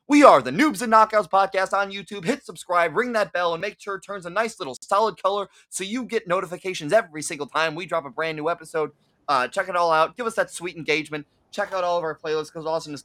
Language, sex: English, male